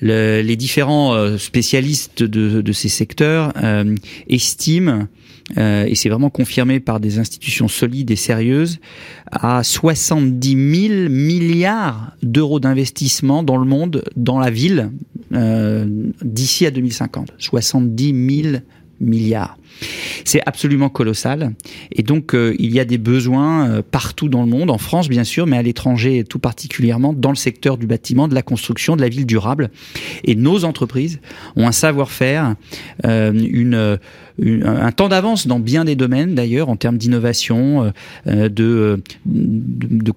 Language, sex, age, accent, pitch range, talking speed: French, male, 40-59, French, 115-140 Hz, 145 wpm